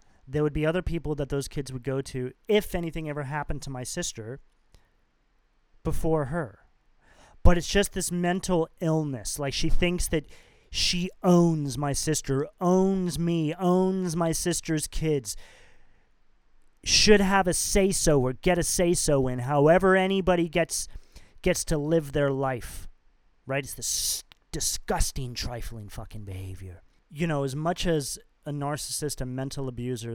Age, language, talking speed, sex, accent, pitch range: 30-49, English, 145 wpm, male, American, 130-170 Hz